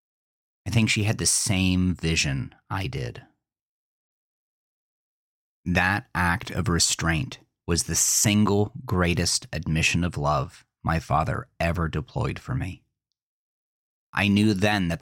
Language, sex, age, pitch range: English, male, 30-49, 85-100 Hz